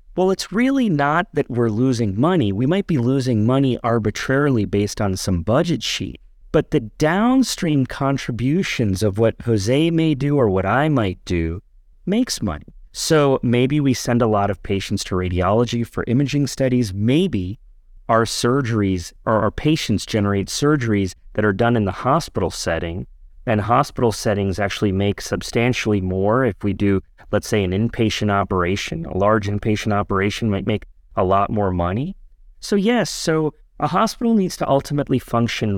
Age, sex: 30-49, male